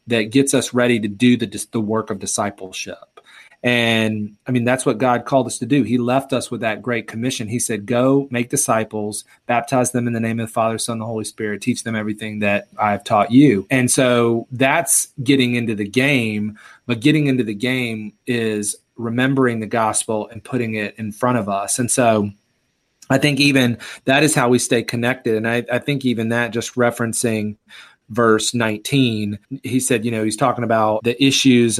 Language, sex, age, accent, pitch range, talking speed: English, male, 30-49, American, 110-130 Hz, 200 wpm